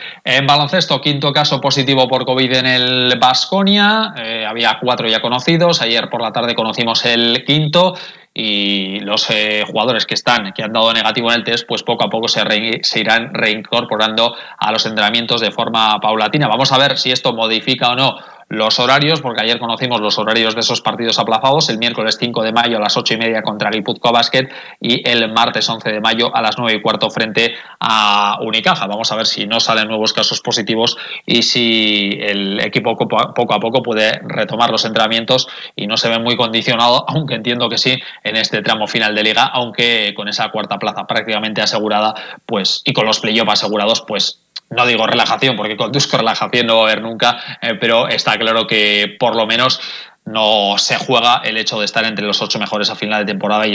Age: 20-39